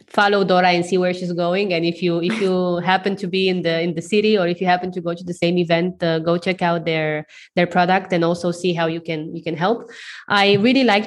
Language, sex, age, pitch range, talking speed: English, female, 20-39, 170-195 Hz, 265 wpm